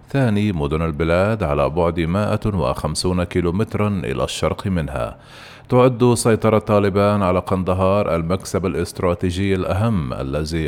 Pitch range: 85-110 Hz